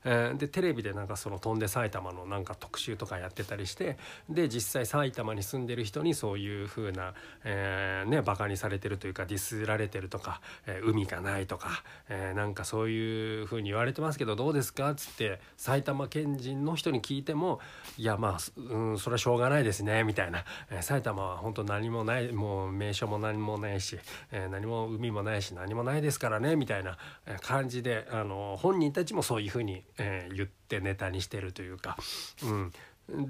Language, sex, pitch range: Japanese, male, 100-135 Hz